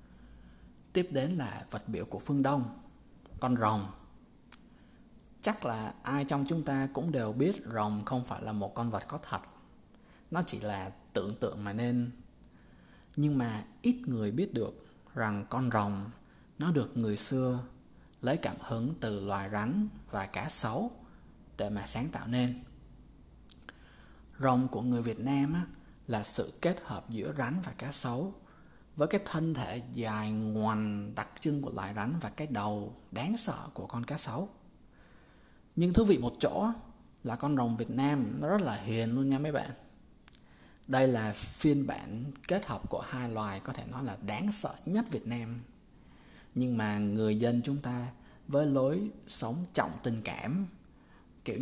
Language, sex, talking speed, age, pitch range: Vietnamese, male, 170 wpm, 20-39, 105-145 Hz